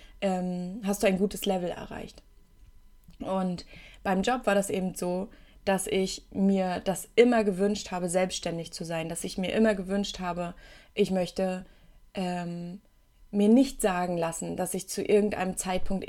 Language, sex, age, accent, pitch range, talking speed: German, female, 20-39, German, 185-215 Hz, 155 wpm